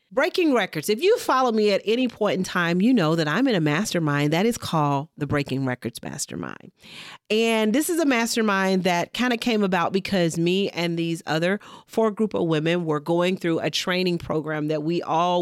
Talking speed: 205 wpm